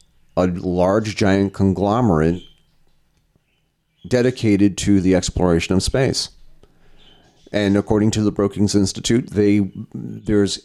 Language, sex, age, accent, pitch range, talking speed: English, male, 40-59, American, 90-110 Hz, 100 wpm